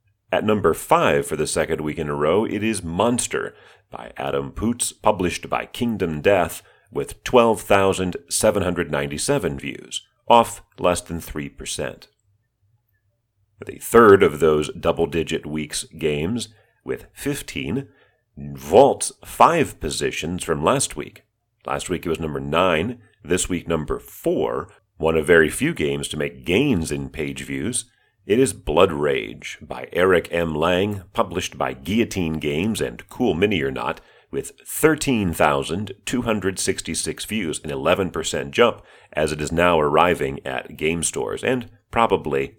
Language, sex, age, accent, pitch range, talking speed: English, male, 40-59, American, 75-110 Hz, 145 wpm